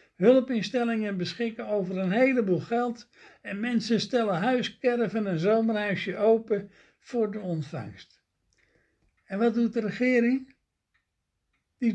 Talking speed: 110 wpm